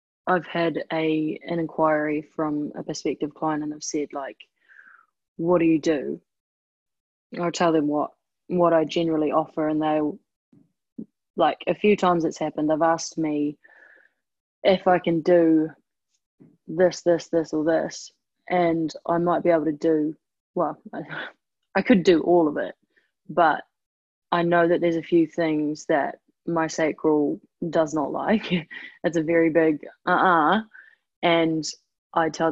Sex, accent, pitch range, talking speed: female, Australian, 155-175 Hz, 155 wpm